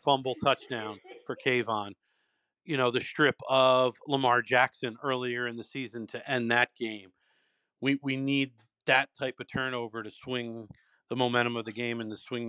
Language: English